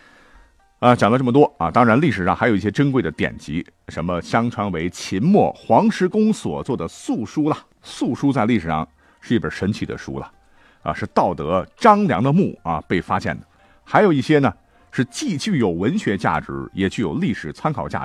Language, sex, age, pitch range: Chinese, male, 50-69, 85-140 Hz